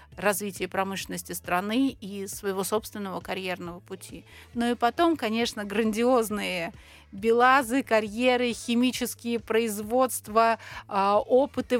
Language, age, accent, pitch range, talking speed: Russian, 30-49, native, 205-250 Hz, 90 wpm